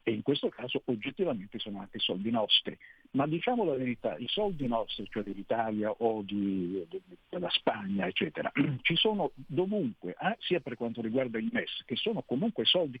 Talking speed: 165 wpm